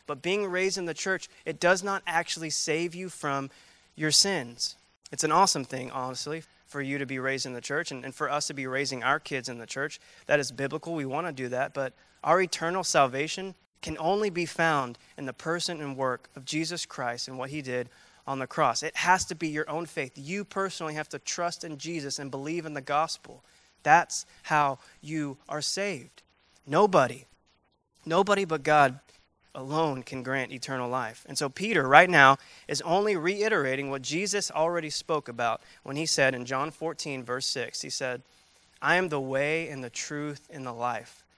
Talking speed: 200 wpm